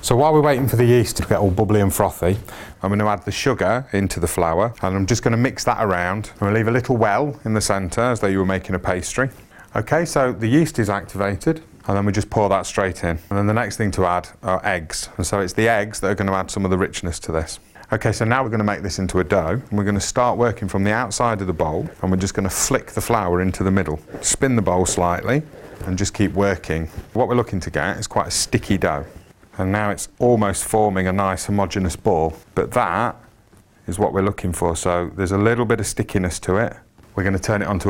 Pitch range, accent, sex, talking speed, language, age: 95-115 Hz, British, male, 270 wpm, English, 30-49